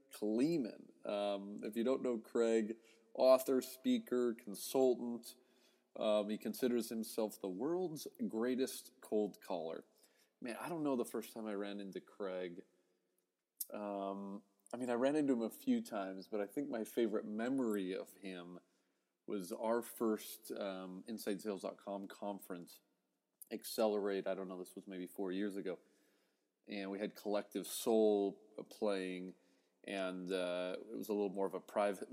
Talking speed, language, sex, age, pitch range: 150 wpm, English, male, 30-49, 100-120 Hz